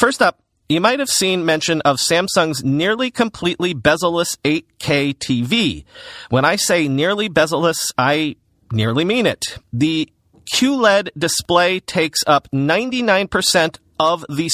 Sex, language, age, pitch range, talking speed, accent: male, English, 40-59, 125-180 Hz, 130 wpm, American